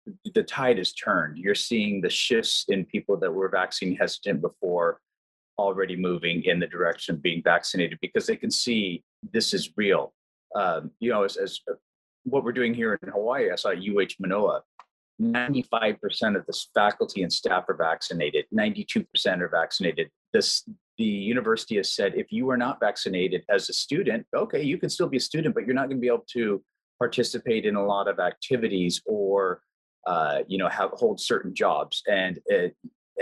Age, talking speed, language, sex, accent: 30-49, 180 wpm, English, male, American